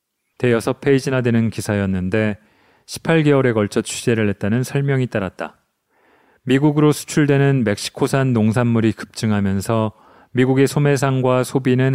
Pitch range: 110-130 Hz